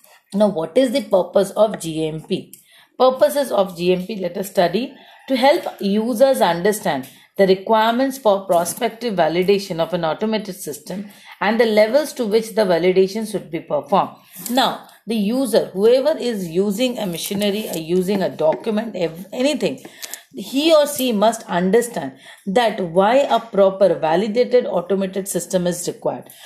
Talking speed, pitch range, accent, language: 140 wpm, 180-240 Hz, Indian, English